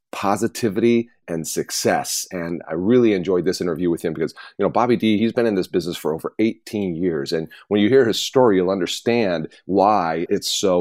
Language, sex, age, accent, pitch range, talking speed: English, male, 40-59, American, 90-110 Hz, 200 wpm